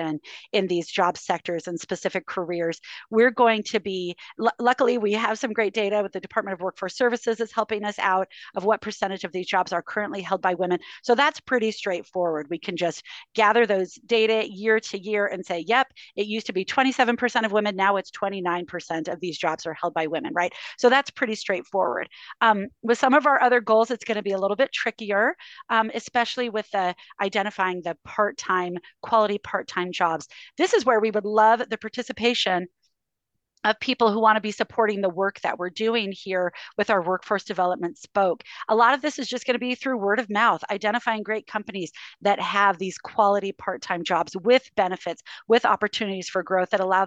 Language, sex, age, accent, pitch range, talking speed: English, female, 40-59, American, 185-230 Hz, 200 wpm